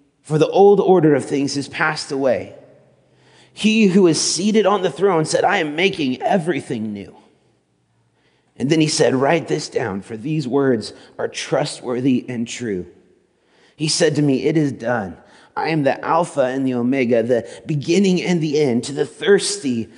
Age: 30-49